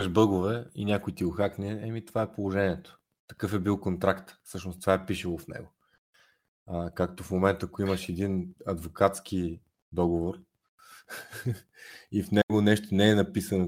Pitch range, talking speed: 85-100 Hz, 155 wpm